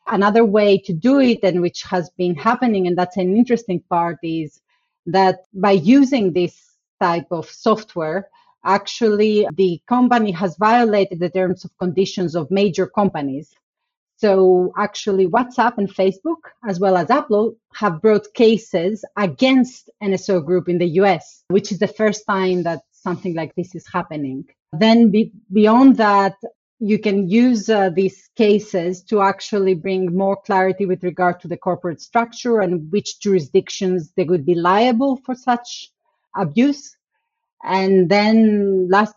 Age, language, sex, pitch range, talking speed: 30-49, English, female, 180-215 Hz, 150 wpm